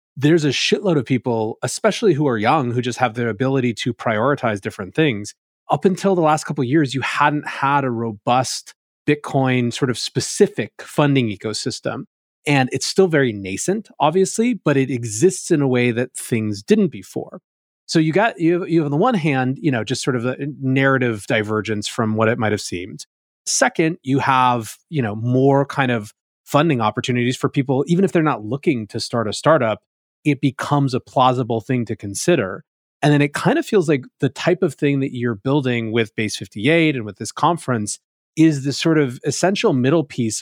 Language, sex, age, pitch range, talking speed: English, male, 30-49, 115-150 Hz, 195 wpm